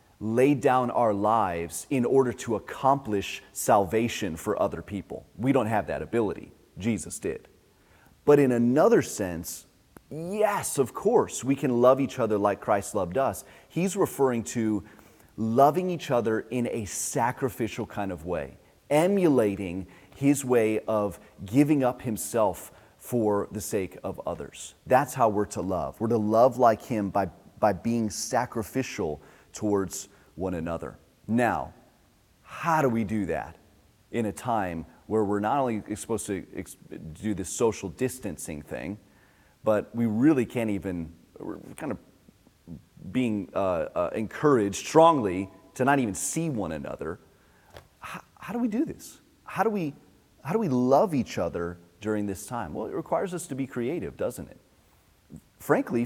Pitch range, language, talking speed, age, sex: 100-130 Hz, English, 150 wpm, 30-49, male